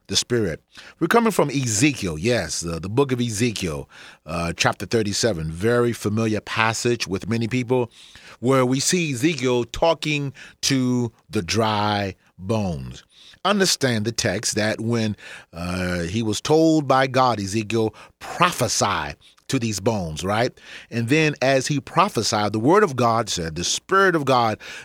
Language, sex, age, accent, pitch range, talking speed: English, male, 40-59, American, 110-140 Hz, 145 wpm